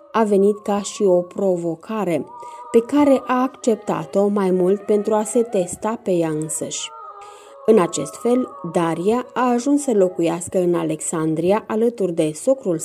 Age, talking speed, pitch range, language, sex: 30-49, 150 wpm, 175-235 Hz, Romanian, female